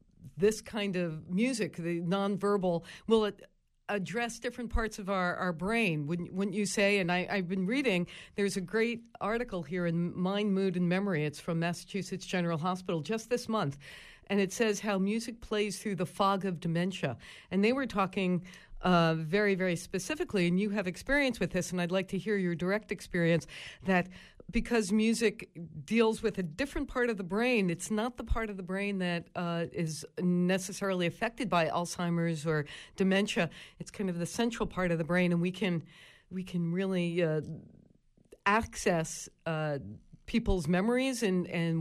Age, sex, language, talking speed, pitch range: 50-69, female, English, 175 wpm, 175-215 Hz